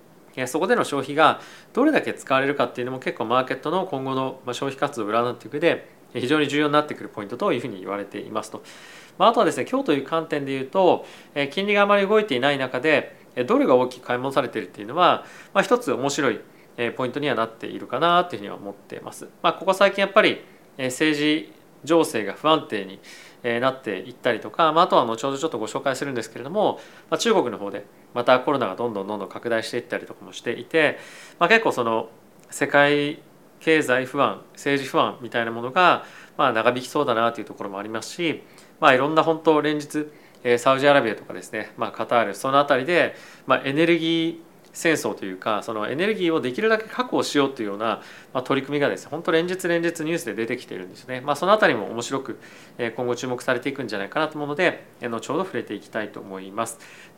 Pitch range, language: 120-165 Hz, Japanese